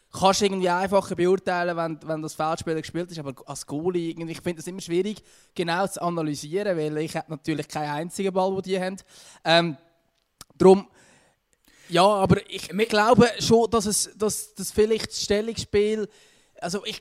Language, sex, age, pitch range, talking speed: German, male, 20-39, 155-195 Hz, 160 wpm